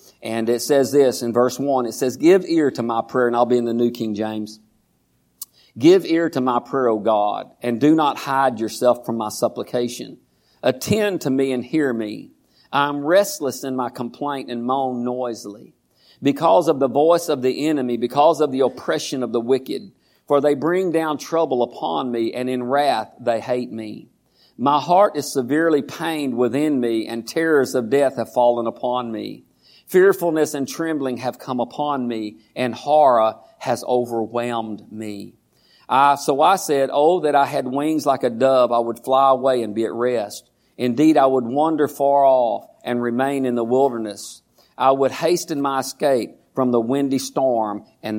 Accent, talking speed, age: American, 180 wpm, 50-69